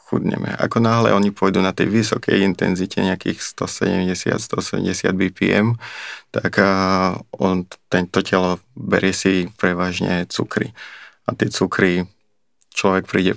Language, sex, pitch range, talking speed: Slovak, male, 90-100 Hz, 110 wpm